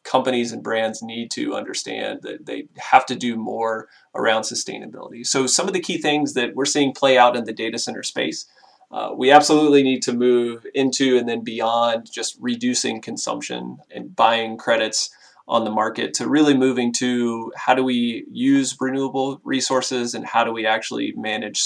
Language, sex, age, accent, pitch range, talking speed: English, male, 30-49, American, 120-150 Hz, 180 wpm